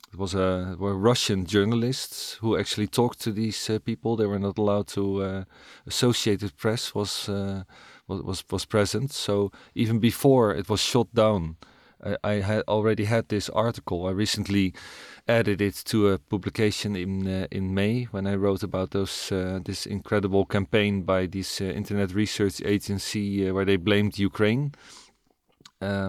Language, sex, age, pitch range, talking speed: English, male, 40-59, 95-110 Hz, 165 wpm